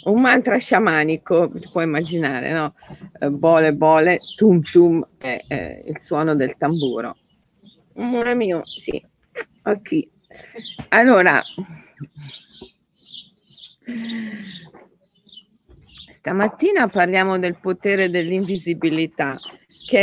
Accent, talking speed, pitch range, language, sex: native, 85 wpm, 160-200 Hz, Italian, female